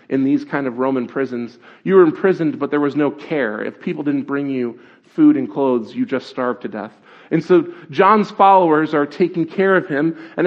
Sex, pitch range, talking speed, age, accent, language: male, 145-195 Hz, 210 wpm, 40-59, American, English